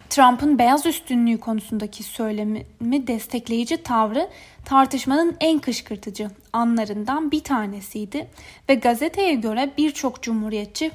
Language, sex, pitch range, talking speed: Turkish, female, 220-280 Hz, 100 wpm